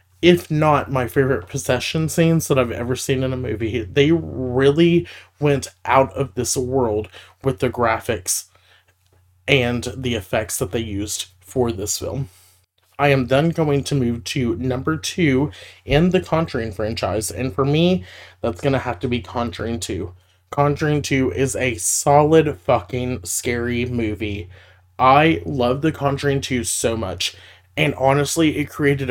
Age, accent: 30-49, American